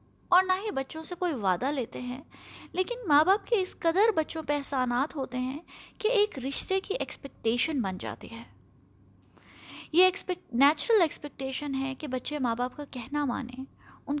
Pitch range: 240-310 Hz